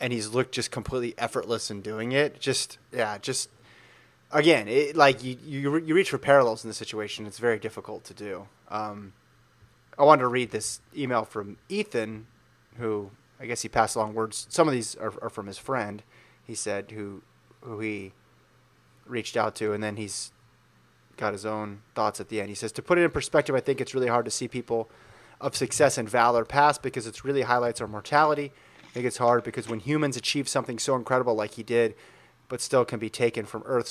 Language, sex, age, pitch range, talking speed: English, male, 30-49, 110-125 Hz, 210 wpm